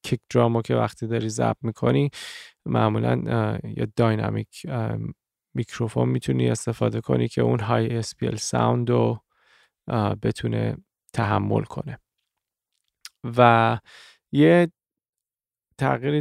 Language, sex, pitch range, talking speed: Persian, male, 110-135 Hz, 95 wpm